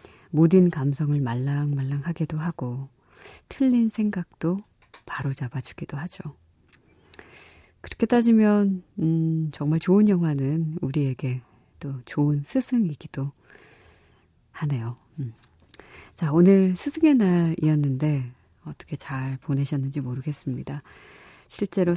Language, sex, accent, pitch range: Korean, female, native, 135-180 Hz